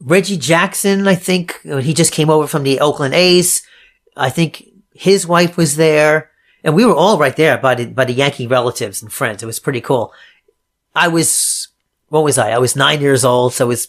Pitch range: 130-175 Hz